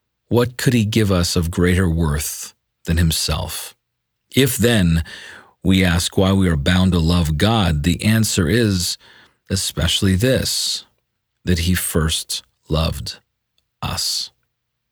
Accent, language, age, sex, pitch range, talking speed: American, English, 40-59, male, 85-100 Hz, 125 wpm